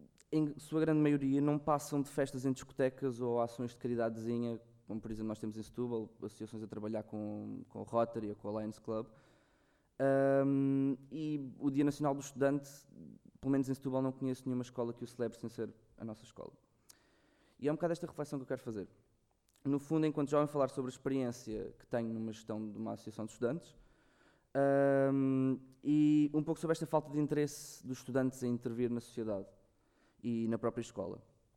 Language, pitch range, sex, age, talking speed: Portuguese, 110-135 Hz, male, 20-39, 195 wpm